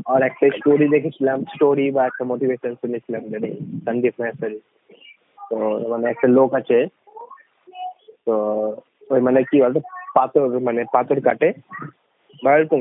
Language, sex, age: Bengali, male, 20-39